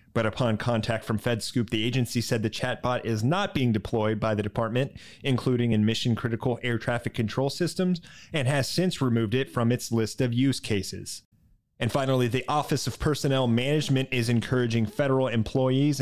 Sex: male